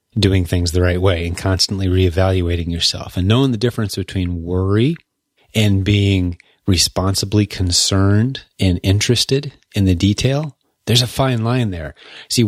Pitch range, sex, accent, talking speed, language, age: 95-120 Hz, male, American, 145 wpm, English, 30-49